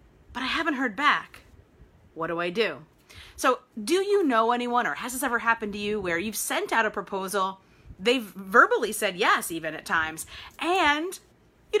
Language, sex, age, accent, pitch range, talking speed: English, female, 30-49, American, 205-315 Hz, 185 wpm